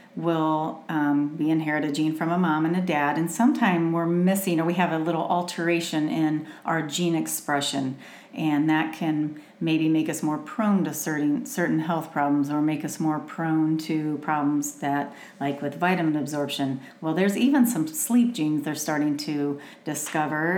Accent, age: American, 40-59